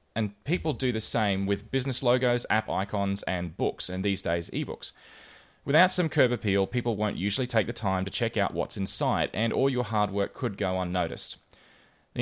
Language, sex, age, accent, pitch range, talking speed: English, male, 20-39, Australian, 95-115 Hz, 195 wpm